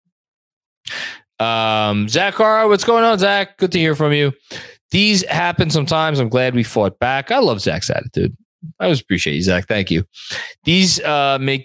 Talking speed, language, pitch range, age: 170 wpm, English, 110-160 Hz, 20-39